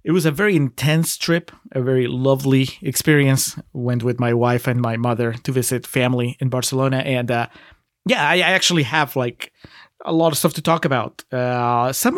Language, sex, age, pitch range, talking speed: English, male, 30-49, 125-160 Hz, 185 wpm